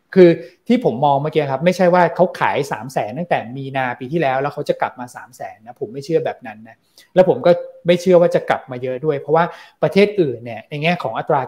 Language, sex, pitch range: Thai, male, 130-170 Hz